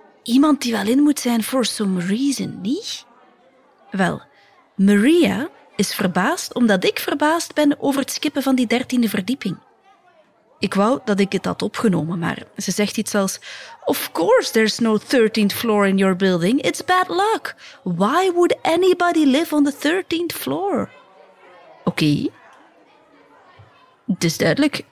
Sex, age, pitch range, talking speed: female, 30-49, 195-280 Hz, 145 wpm